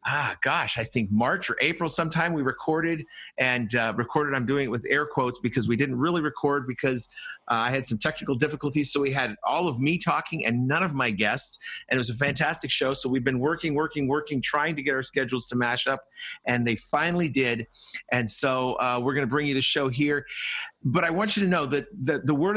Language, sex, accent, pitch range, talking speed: English, male, American, 125-160 Hz, 235 wpm